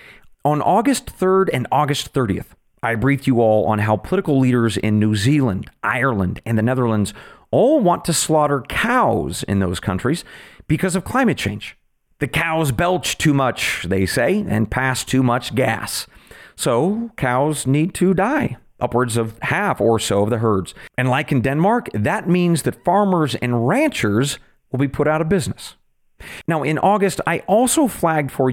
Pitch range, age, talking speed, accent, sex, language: 115-160 Hz, 40-59, 170 wpm, American, male, English